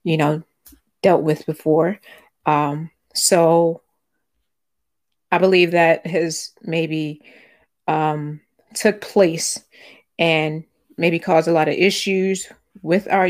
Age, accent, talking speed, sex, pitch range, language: 30-49, American, 110 wpm, female, 155-185 Hz, English